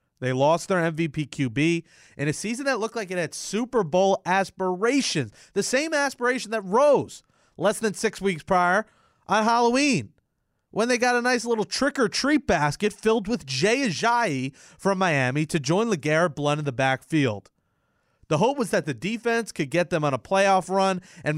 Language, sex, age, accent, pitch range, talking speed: English, male, 30-49, American, 140-195 Hz, 175 wpm